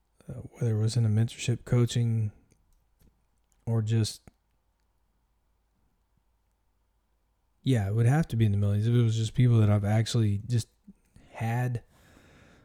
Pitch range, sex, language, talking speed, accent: 100-125 Hz, male, English, 135 wpm, American